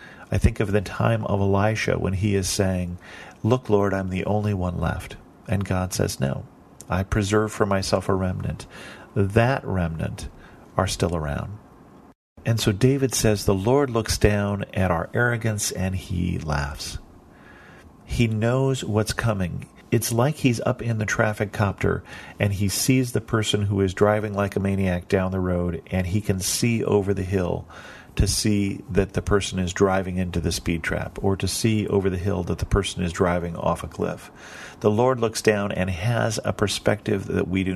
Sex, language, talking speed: male, English, 185 wpm